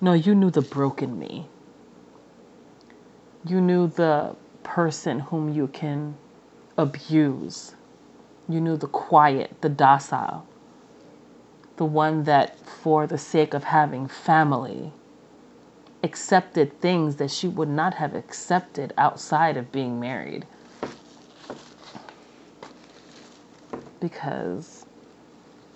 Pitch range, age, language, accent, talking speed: 145-165 Hz, 30-49, English, American, 100 wpm